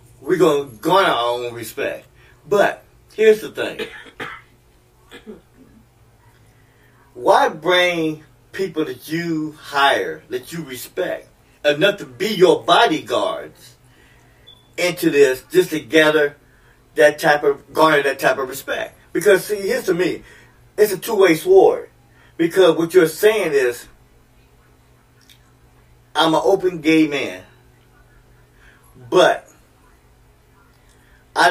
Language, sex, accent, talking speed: English, male, American, 110 wpm